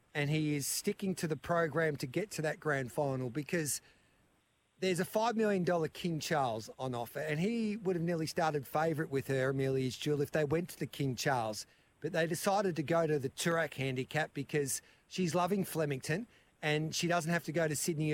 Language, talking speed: English, 200 wpm